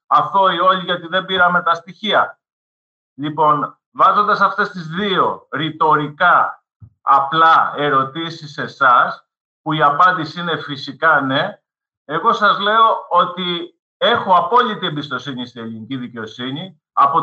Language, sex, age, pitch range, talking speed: Greek, male, 50-69, 145-195 Hz, 120 wpm